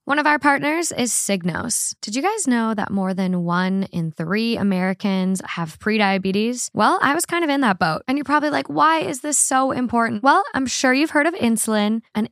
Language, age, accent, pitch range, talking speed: English, 10-29, American, 195-245 Hz, 215 wpm